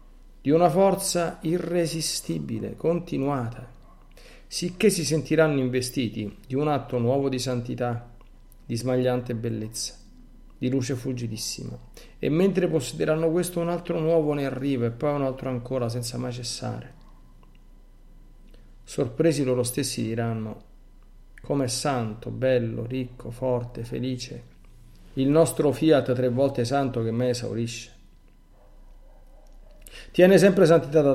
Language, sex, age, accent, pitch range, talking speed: Italian, male, 50-69, native, 115-150 Hz, 120 wpm